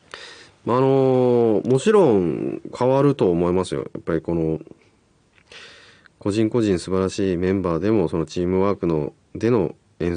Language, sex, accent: Japanese, male, native